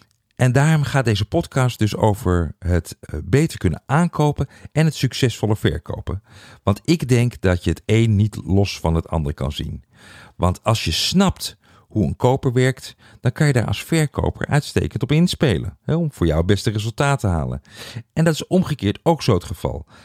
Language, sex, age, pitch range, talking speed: Dutch, male, 50-69, 95-135 Hz, 185 wpm